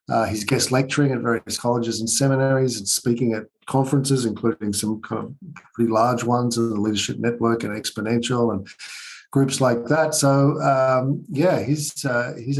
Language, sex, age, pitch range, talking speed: English, male, 50-69, 120-140 Hz, 170 wpm